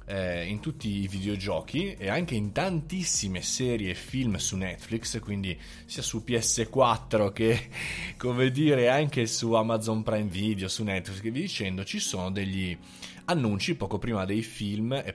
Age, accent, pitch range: 20-39, native, 95-120 Hz